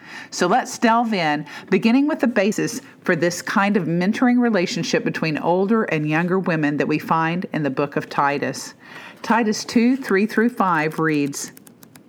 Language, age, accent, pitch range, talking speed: English, 50-69, American, 160-220 Hz, 165 wpm